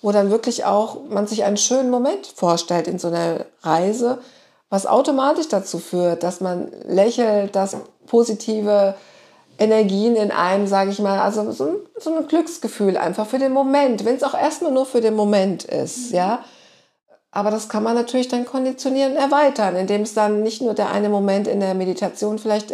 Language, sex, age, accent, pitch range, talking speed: German, female, 50-69, German, 190-245 Hz, 180 wpm